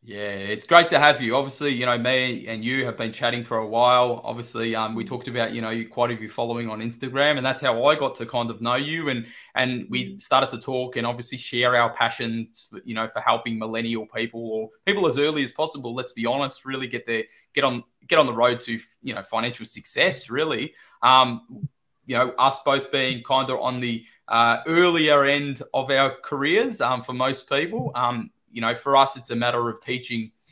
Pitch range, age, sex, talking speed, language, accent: 115-135 Hz, 20-39, male, 220 wpm, English, Australian